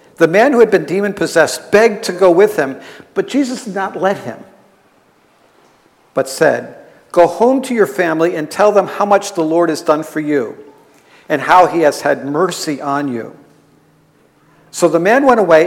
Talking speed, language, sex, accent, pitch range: 185 wpm, English, male, American, 155-200 Hz